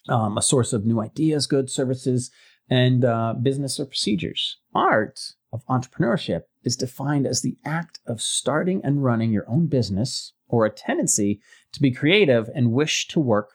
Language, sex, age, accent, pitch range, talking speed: English, male, 30-49, American, 120-160 Hz, 170 wpm